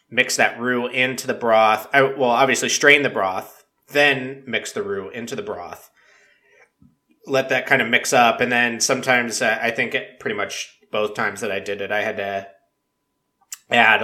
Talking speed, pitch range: 190 wpm, 110-140 Hz